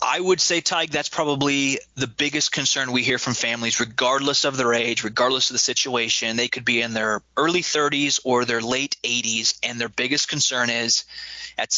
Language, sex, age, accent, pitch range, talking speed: English, male, 20-39, American, 120-140 Hz, 195 wpm